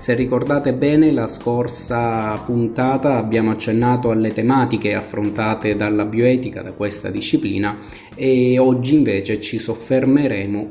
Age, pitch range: 20-39, 100-115 Hz